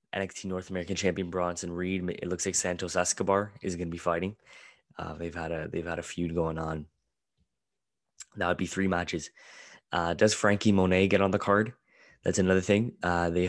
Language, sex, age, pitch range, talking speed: English, male, 20-39, 85-95 Hz, 195 wpm